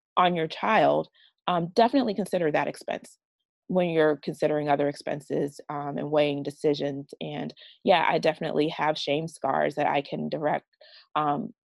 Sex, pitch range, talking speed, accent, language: female, 140-160 Hz, 150 wpm, American, English